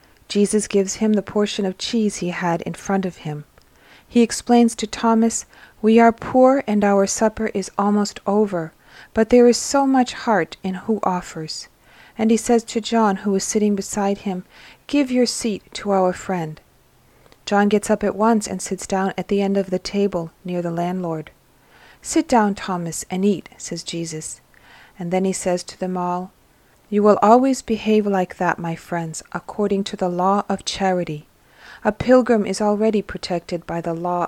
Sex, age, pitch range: female, 40-59, 185-225 Hz